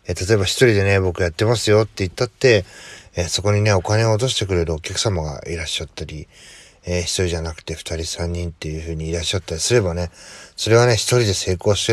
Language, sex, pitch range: Japanese, male, 85-110 Hz